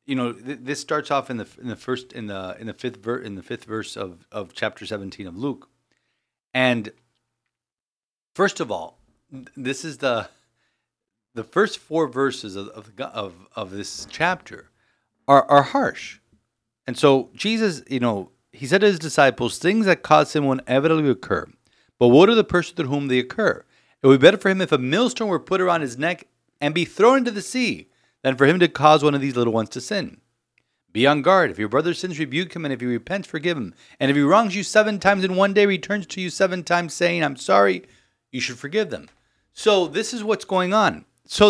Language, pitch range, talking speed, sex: English, 120-175 Hz, 200 wpm, male